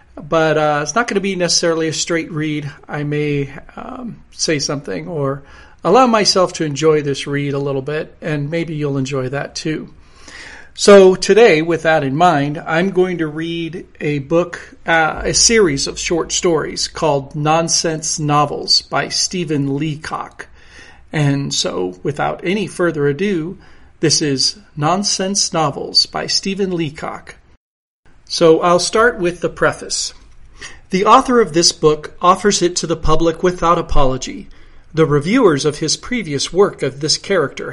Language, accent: English, American